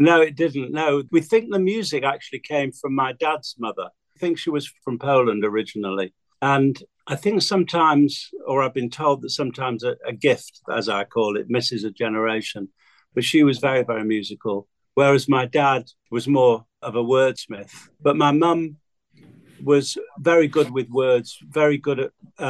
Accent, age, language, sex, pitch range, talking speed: British, 50-69, English, male, 115-145 Hz, 175 wpm